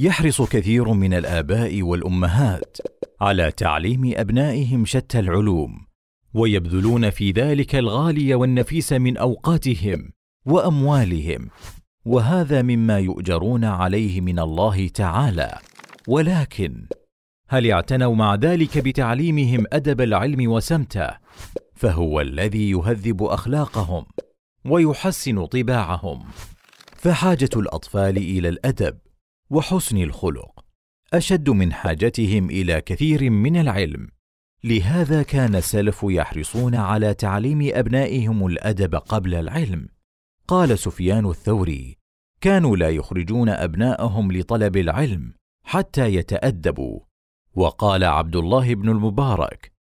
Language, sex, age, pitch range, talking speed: Arabic, male, 40-59, 90-130 Hz, 95 wpm